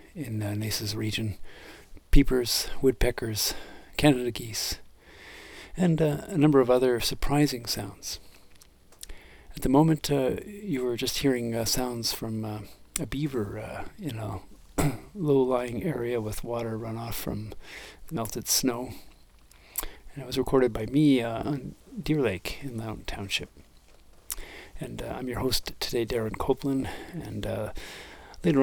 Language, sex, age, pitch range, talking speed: English, male, 40-59, 105-135 Hz, 140 wpm